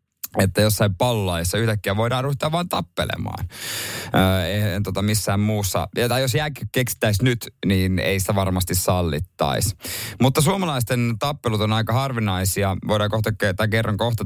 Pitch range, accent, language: 95-125 Hz, native, Finnish